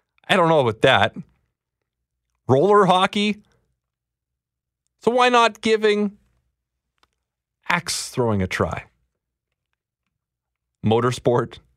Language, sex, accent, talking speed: English, male, American, 80 wpm